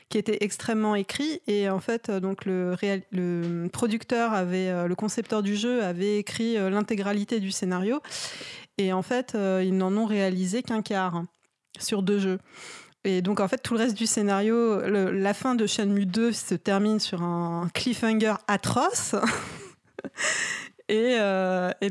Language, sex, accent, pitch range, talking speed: French, female, French, 185-220 Hz, 150 wpm